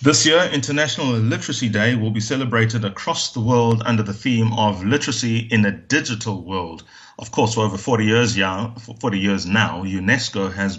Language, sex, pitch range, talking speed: English, male, 100-120 Hz, 165 wpm